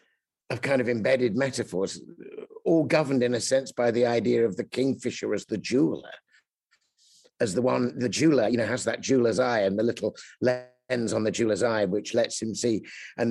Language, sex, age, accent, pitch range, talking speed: English, male, 50-69, British, 125-155 Hz, 195 wpm